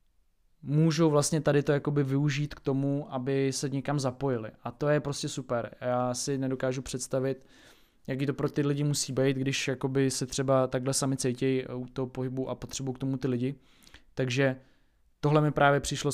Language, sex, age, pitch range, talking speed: Czech, male, 20-39, 125-140 Hz, 180 wpm